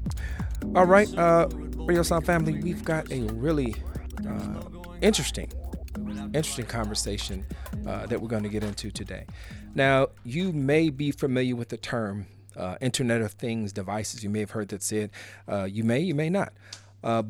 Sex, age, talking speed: male, 40-59, 165 wpm